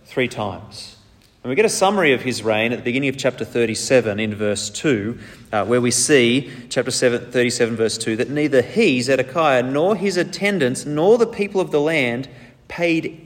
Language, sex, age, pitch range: English, male, 30-49, 115-155 Hz